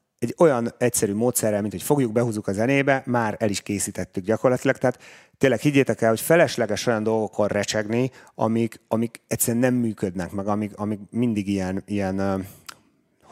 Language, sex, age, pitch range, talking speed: Hungarian, male, 30-49, 105-130 Hz, 160 wpm